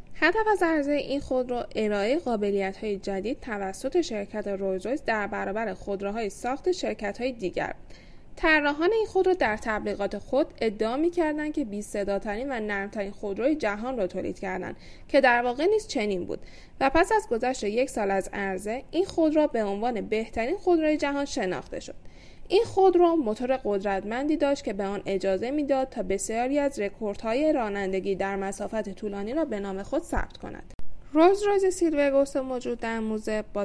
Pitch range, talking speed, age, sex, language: 200-280 Hz, 160 wpm, 10-29, female, Persian